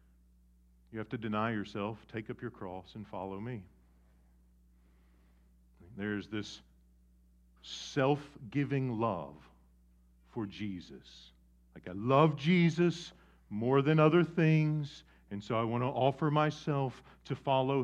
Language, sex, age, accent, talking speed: English, male, 50-69, American, 120 wpm